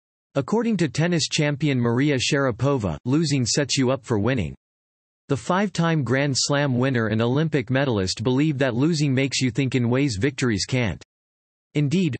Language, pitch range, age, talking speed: English, 115-150 Hz, 40-59, 150 wpm